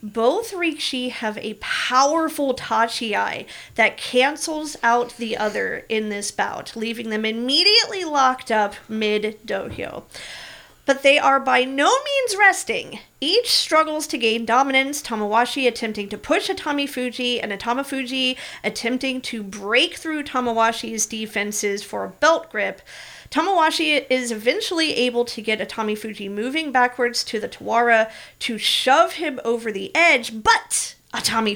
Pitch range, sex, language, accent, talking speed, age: 225-300 Hz, female, English, American, 140 wpm, 40-59